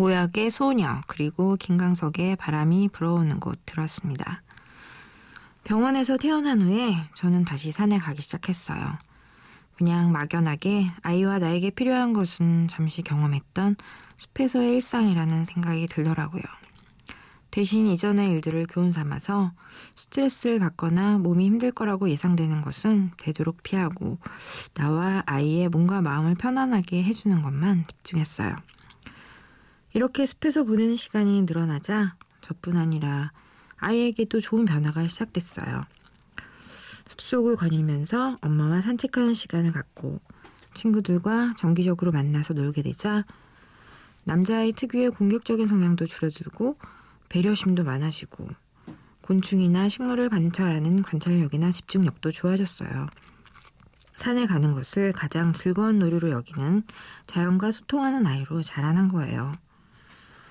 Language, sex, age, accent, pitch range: Korean, female, 20-39, native, 165-210 Hz